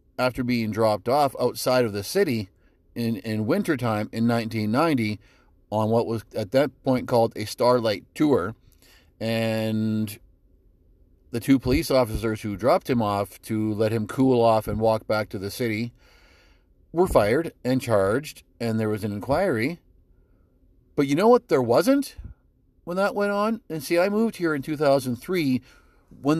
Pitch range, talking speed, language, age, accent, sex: 110-145 Hz, 160 wpm, English, 40-59, American, male